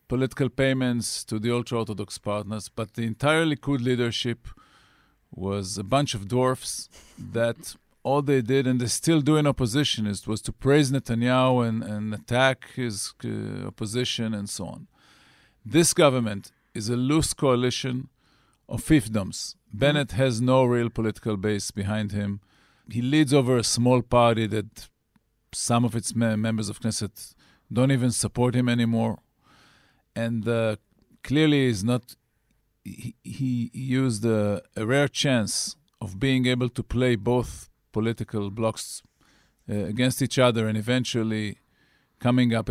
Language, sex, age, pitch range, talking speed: English, male, 40-59, 110-130 Hz, 145 wpm